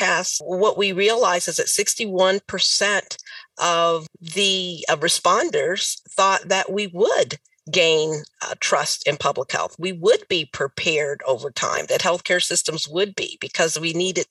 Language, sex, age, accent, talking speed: English, female, 40-59, American, 145 wpm